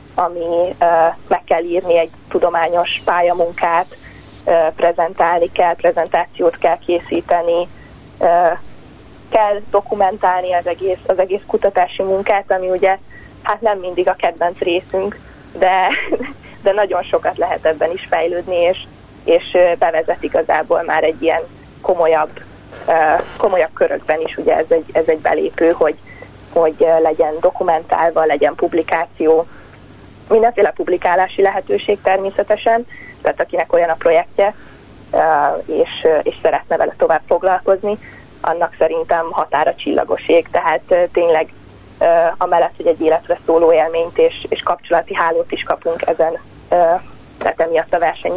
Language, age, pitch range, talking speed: Hungarian, 20-39, 165-195 Hz, 120 wpm